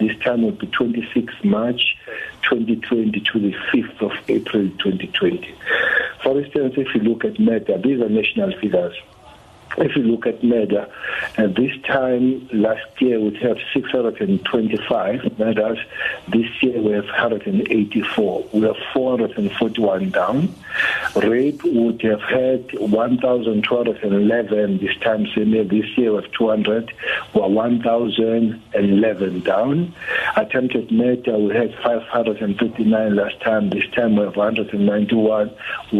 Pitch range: 110-125 Hz